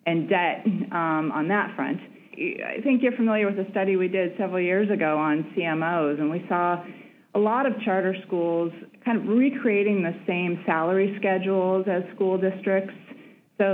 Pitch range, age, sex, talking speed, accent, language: 160-200 Hz, 30-49, female, 170 wpm, American, English